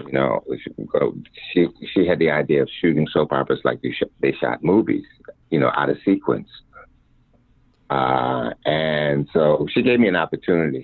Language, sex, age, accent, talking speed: English, male, 60-79, American, 165 wpm